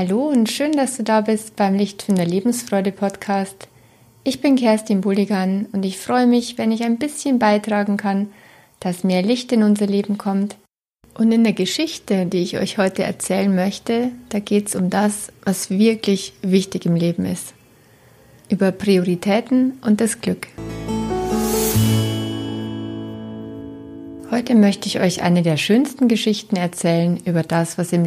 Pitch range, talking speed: 175-215 Hz, 155 wpm